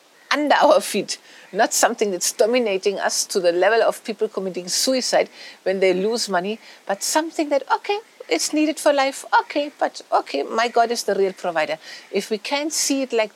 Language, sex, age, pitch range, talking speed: English, female, 60-79, 195-280 Hz, 190 wpm